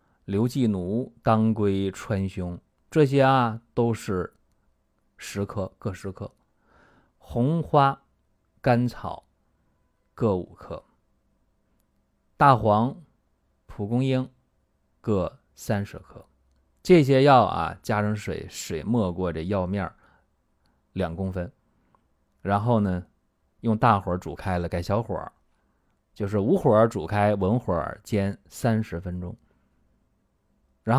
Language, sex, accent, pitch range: Chinese, male, native, 75-115 Hz